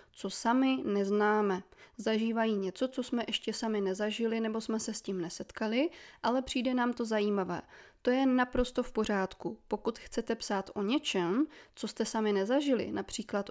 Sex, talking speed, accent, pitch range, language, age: female, 160 wpm, native, 205-245 Hz, Czech, 20-39